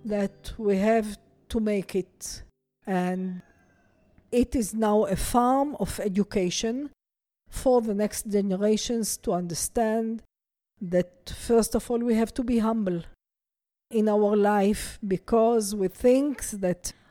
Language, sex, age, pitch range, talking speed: English, female, 50-69, 195-245 Hz, 125 wpm